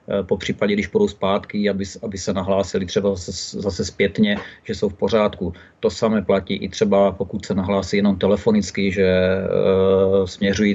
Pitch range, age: 95-110 Hz, 40-59